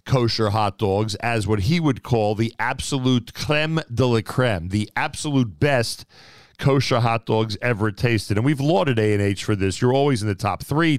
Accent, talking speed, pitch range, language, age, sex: American, 195 wpm, 105-130 Hz, English, 40-59, male